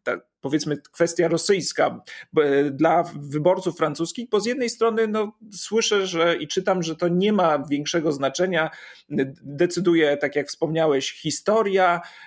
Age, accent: 40-59, native